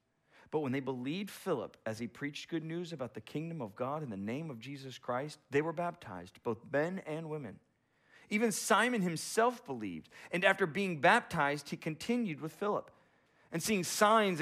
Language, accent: English, American